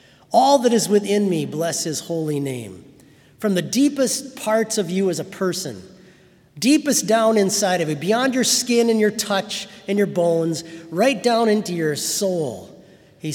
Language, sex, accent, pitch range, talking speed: English, male, American, 145-205 Hz, 170 wpm